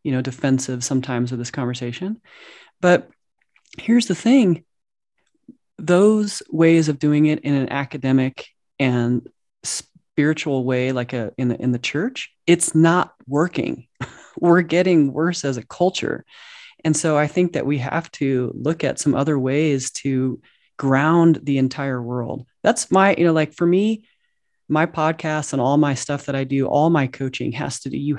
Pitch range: 130-165 Hz